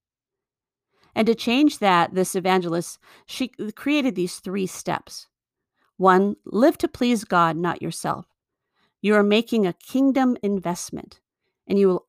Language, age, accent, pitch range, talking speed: English, 50-69, American, 170-220 Hz, 135 wpm